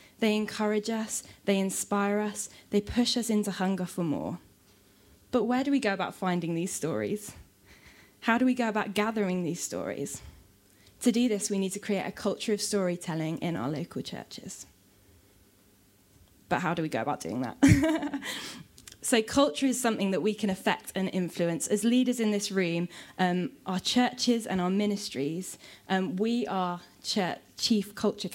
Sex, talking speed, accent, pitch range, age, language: female, 165 wpm, British, 170-215 Hz, 20-39, English